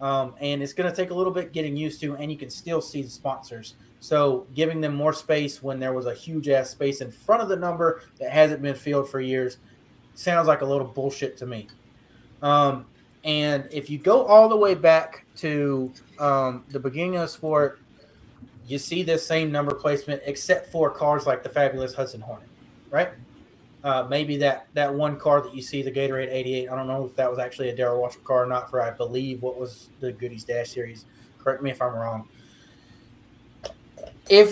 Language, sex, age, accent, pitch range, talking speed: English, male, 30-49, American, 130-180 Hz, 205 wpm